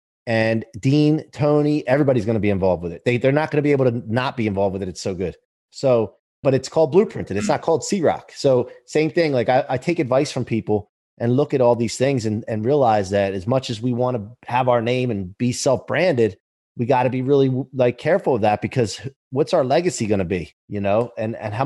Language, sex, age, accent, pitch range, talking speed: English, male, 30-49, American, 110-145 Hz, 245 wpm